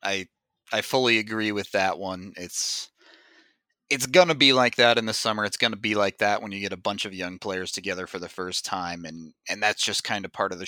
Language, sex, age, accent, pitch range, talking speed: English, male, 30-49, American, 100-120 Hz, 255 wpm